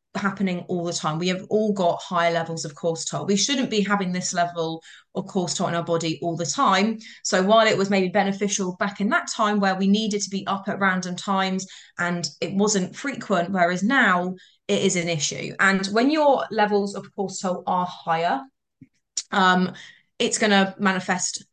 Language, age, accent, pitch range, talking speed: English, 20-39, British, 175-205 Hz, 200 wpm